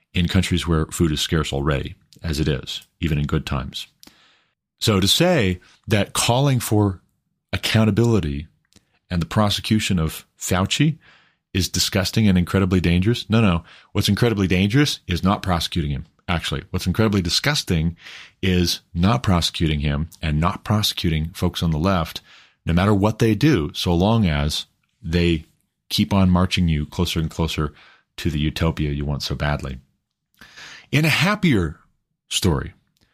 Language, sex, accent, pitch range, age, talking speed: English, male, American, 80-105 Hz, 30-49, 150 wpm